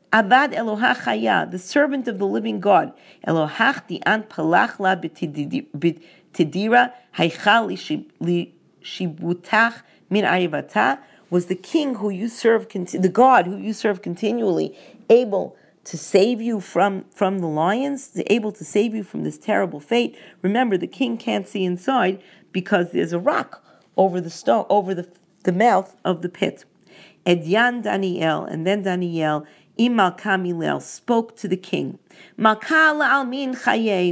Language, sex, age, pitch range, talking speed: English, female, 40-59, 185-245 Hz, 125 wpm